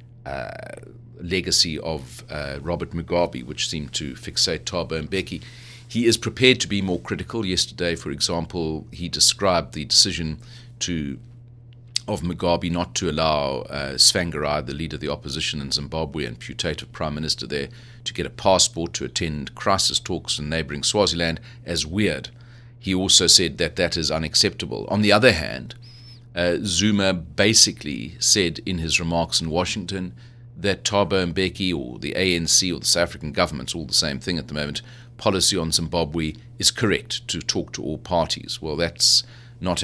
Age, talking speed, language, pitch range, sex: 40-59, 165 wpm, English, 80-115 Hz, male